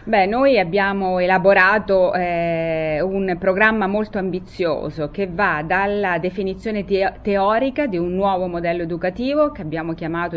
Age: 30-49